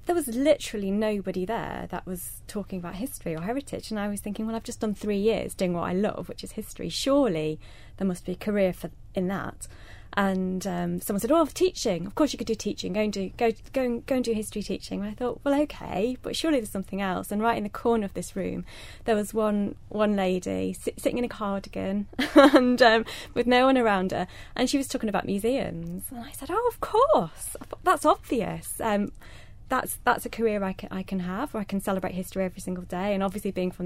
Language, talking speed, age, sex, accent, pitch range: English, 230 wpm, 20-39, female, British, 185-235 Hz